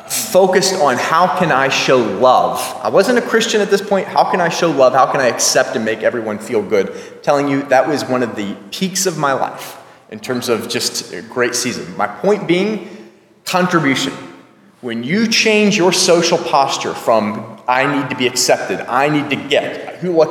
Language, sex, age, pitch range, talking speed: English, male, 30-49, 135-195 Hz, 200 wpm